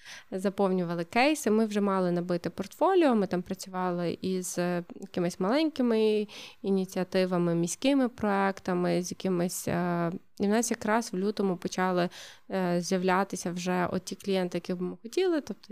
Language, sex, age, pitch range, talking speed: Ukrainian, female, 20-39, 185-210 Hz, 135 wpm